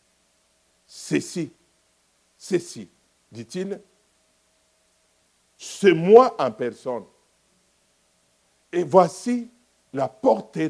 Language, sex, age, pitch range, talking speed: French, male, 60-79, 130-190 Hz, 60 wpm